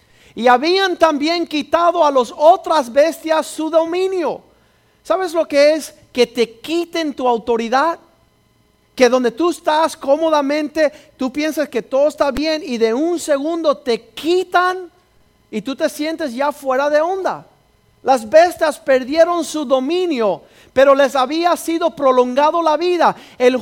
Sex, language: male, Spanish